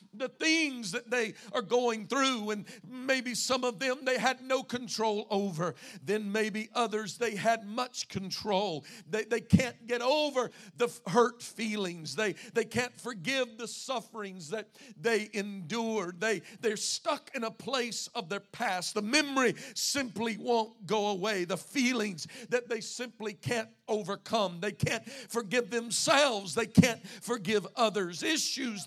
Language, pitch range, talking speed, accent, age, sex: English, 205-250 Hz, 150 wpm, American, 50-69, male